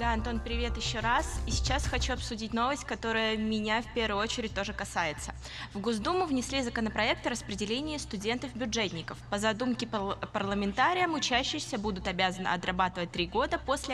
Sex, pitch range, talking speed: female, 185-265 Hz, 145 wpm